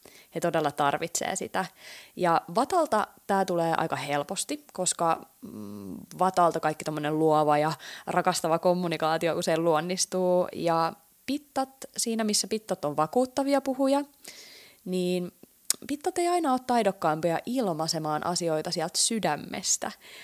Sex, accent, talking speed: female, native, 110 wpm